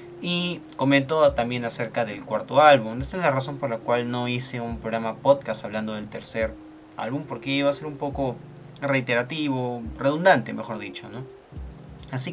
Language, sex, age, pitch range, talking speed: Spanish, male, 30-49, 115-140 Hz, 165 wpm